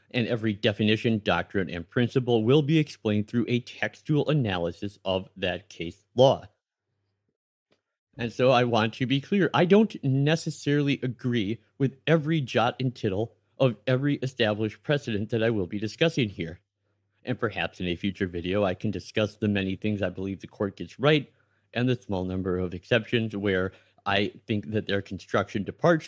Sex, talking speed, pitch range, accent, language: male, 170 wpm, 100-130 Hz, American, English